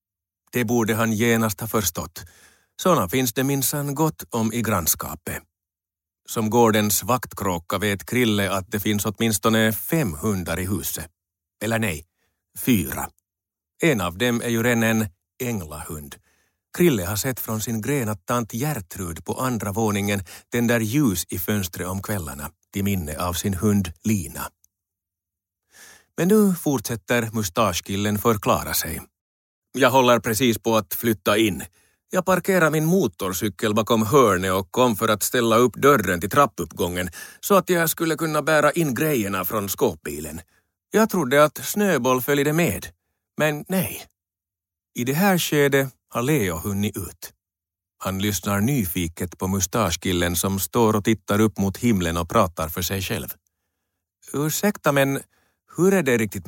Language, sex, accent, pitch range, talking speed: Finnish, male, native, 90-120 Hz, 145 wpm